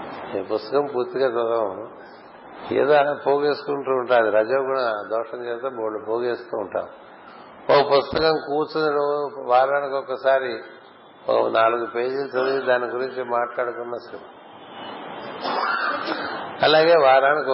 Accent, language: native, Telugu